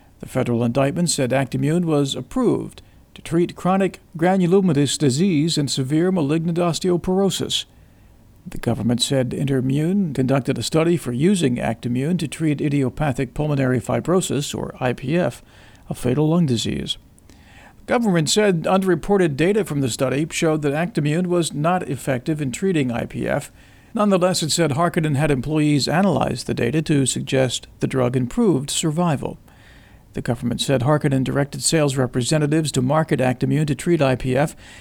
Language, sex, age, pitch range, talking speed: English, male, 50-69, 130-170 Hz, 140 wpm